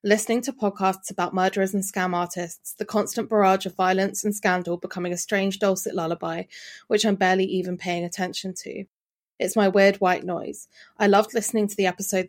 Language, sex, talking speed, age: English, female, 185 wpm, 20-39